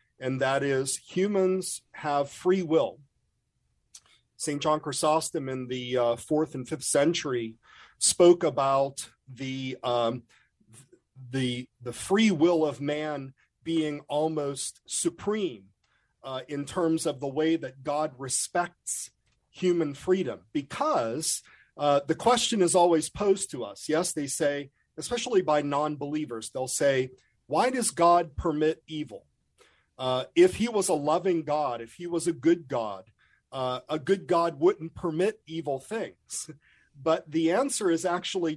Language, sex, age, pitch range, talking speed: English, male, 40-59, 135-175 Hz, 140 wpm